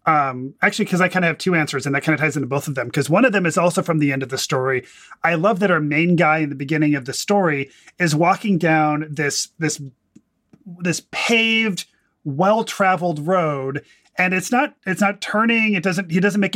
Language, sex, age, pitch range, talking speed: English, male, 30-49, 150-190 Hz, 225 wpm